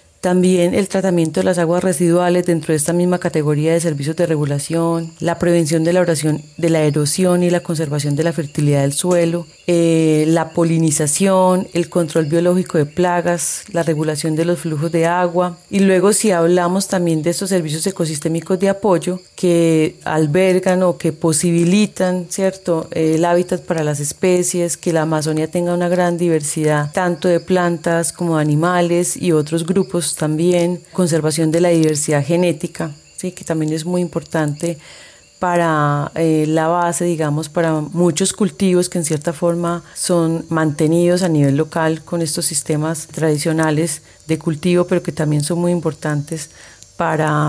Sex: female